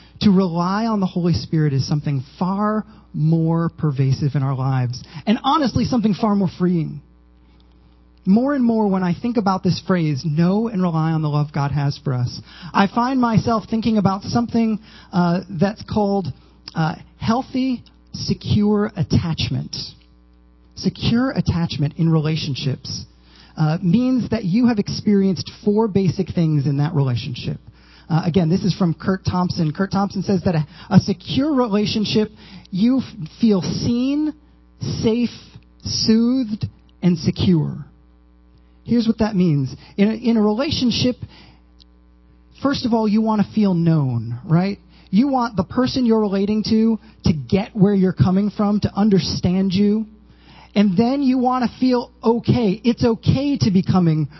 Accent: American